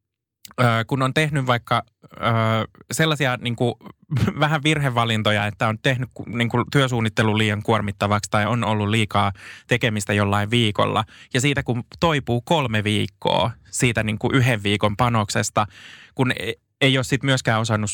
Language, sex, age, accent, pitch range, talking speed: Finnish, male, 20-39, native, 105-125 Hz, 145 wpm